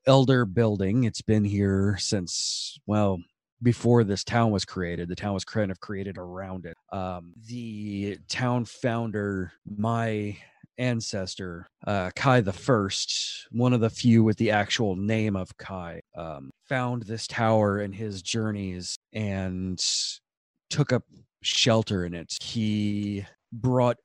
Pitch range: 95-115 Hz